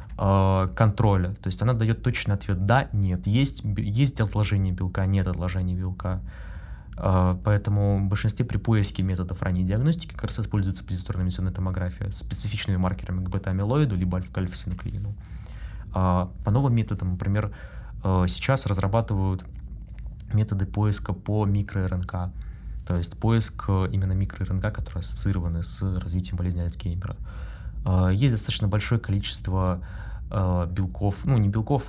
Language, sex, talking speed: Russian, male, 120 wpm